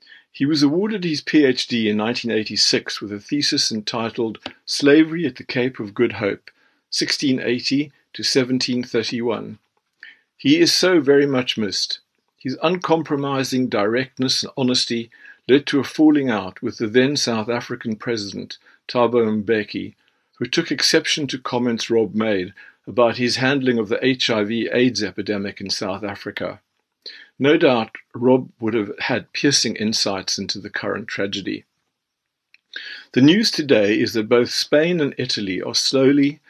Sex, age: male, 50-69